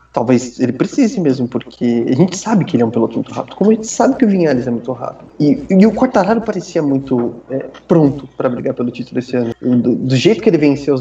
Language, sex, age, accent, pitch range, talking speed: Portuguese, male, 20-39, Brazilian, 125-155 Hz, 250 wpm